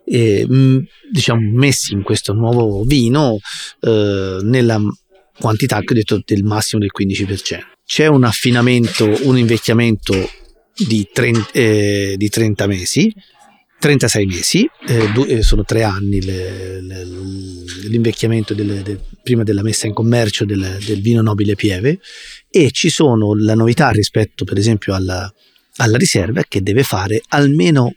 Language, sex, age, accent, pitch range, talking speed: Italian, male, 30-49, native, 105-125 Hz, 125 wpm